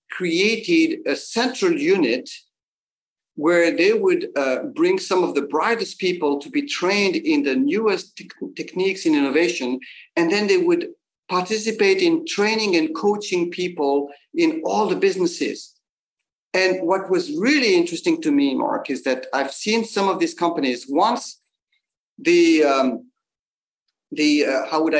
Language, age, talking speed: English, 50-69, 145 wpm